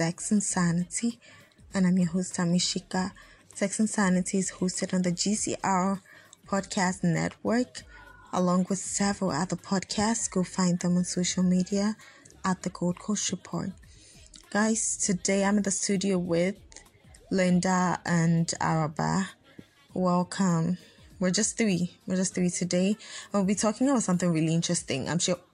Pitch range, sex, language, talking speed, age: 170-195 Hz, female, English, 140 wpm, 10-29